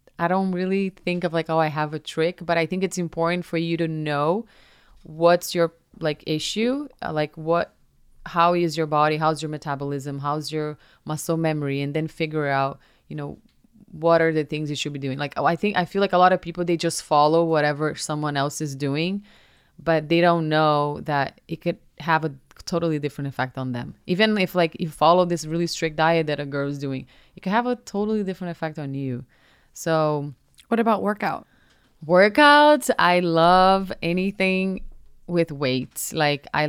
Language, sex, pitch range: English, female, 145-175 Hz